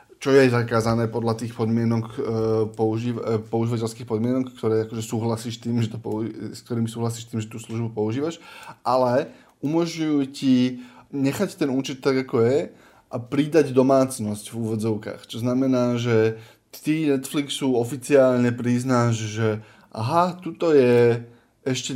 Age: 20-39